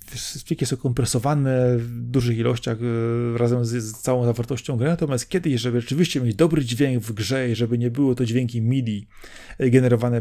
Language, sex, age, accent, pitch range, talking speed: Polish, male, 30-49, native, 120-145 Hz, 170 wpm